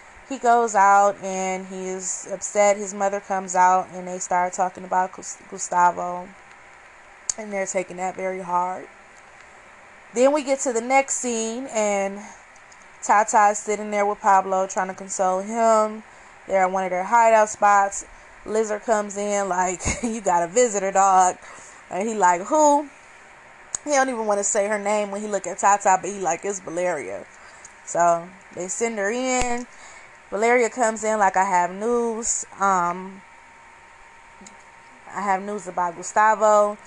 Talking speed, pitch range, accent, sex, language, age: 155 wpm, 190-240 Hz, American, female, English, 20-39